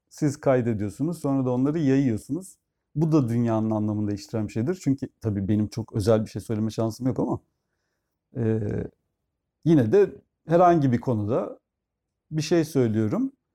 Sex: male